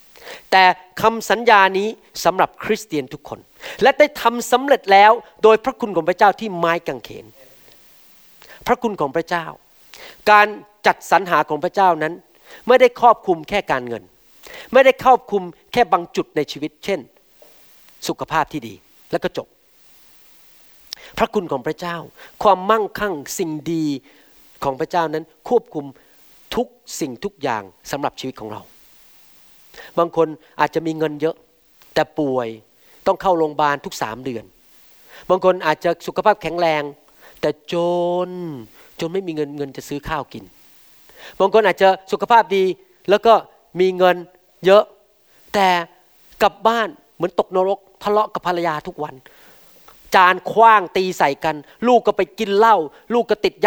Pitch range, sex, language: 155-210 Hz, male, Thai